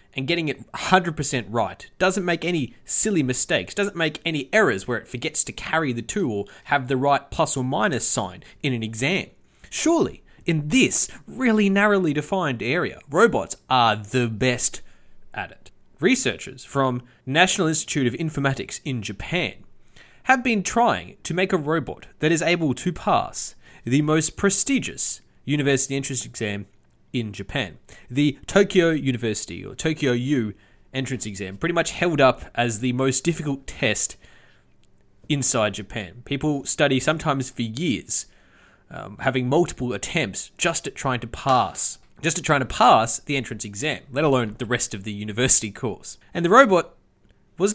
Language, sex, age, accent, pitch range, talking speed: English, male, 20-39, Australian, 120-165 Hz, 160 wpm